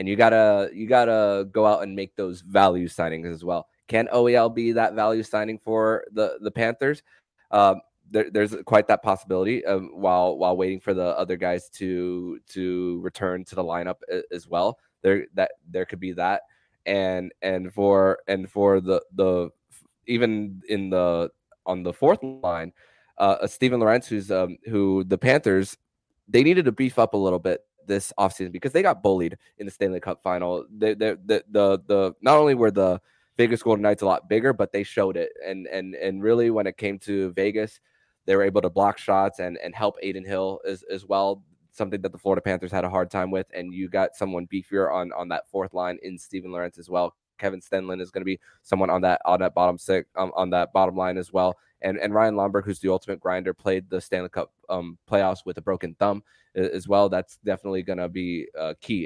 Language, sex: English, male